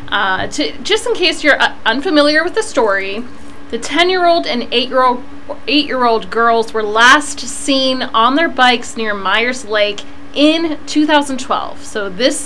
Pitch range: 225-285 Hz